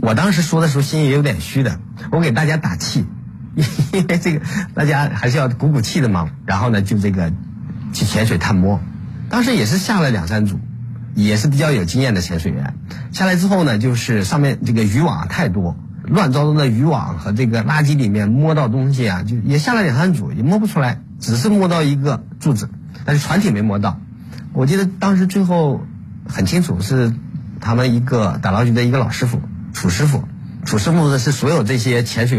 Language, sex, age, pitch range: Chinese, male, 50-69, 110-155 Hz